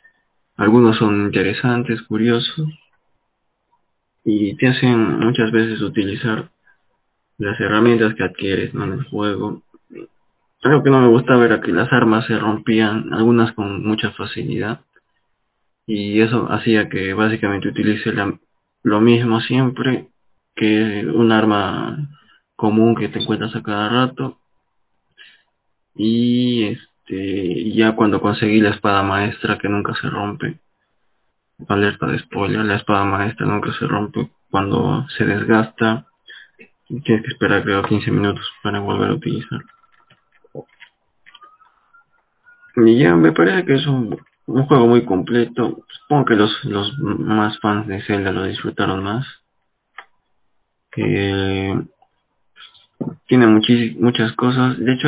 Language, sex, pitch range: Spanish, male, 105-120 Hz